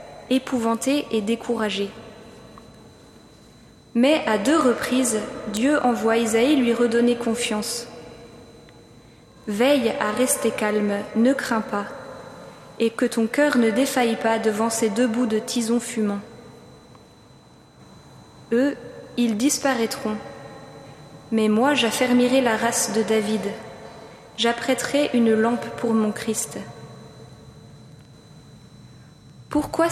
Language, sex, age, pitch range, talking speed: French, female, 20-39, 220-255 Hz, 105 wpm